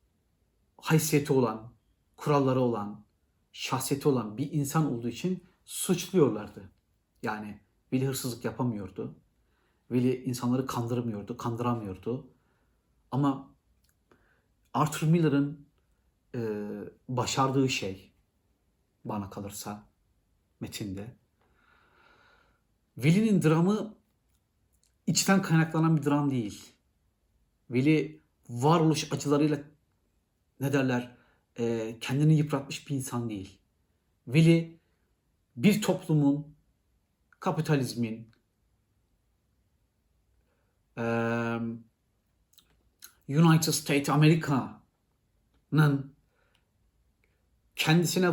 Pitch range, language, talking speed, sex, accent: 105-150 Hz, Turkish, 65 wpm, male, native